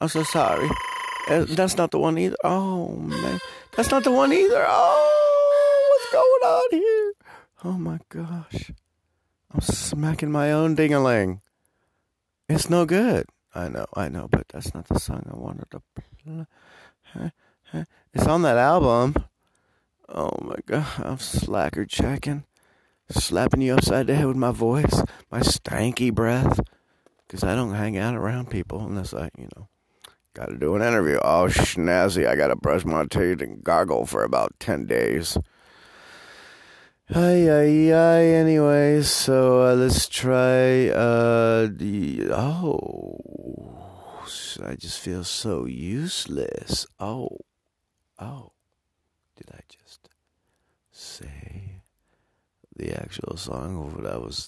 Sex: male